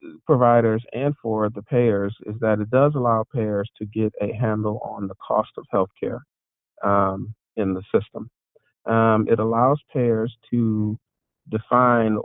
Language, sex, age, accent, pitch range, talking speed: English, male, 40-59, American, 100-120 Hz, 150 wpm